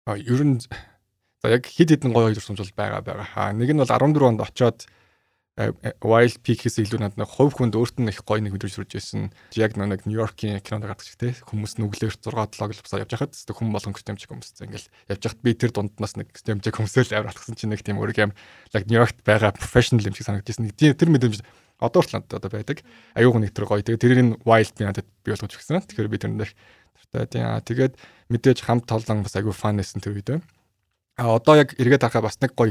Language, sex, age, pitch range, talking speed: English, male, 20-39, 105-120 Hz, 125 wpm